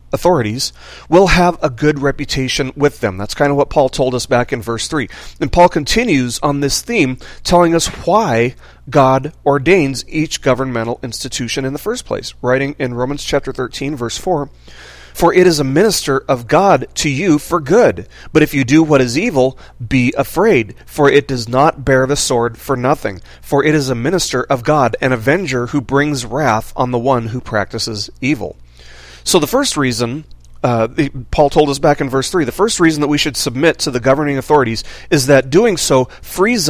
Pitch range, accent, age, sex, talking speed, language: 120-155 Hz, American, 40-59, male, 195 wpm, English